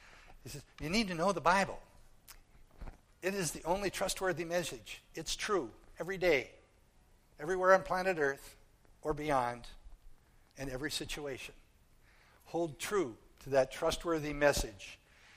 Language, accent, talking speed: English, American, 130 wpm